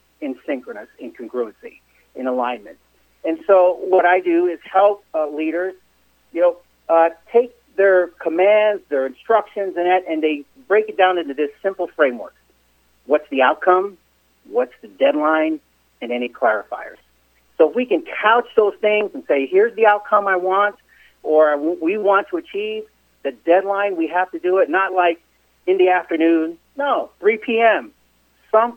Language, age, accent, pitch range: English, 50-69, American, 150-210 Hz